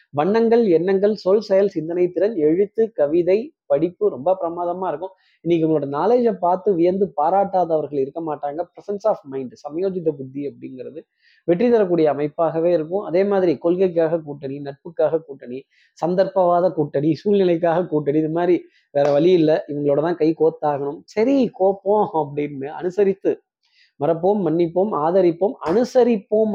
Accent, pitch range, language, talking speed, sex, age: native, 150-205 Hz, Tamil, 130 wpm, male, 20-39